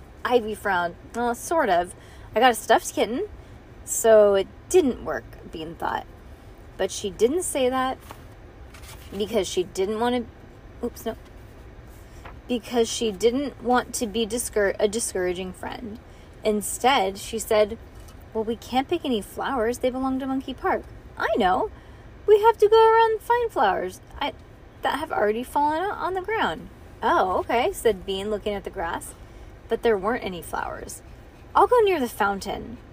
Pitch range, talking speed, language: 210-270 Hz, 160 wpm, English